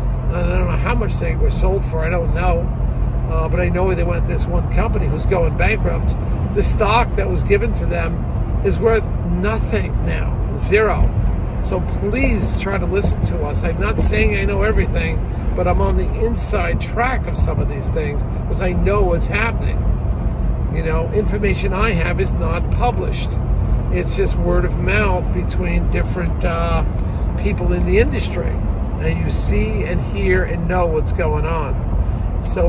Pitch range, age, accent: 85-100 Hz, 50-69, American